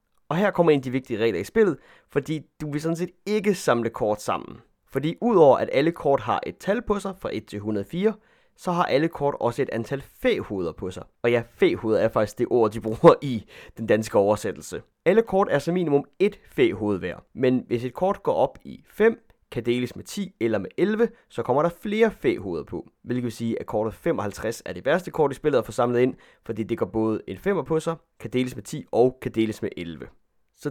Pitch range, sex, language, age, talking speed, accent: 115-170 Hz, male, Danish, 30-49, 230 wpm, native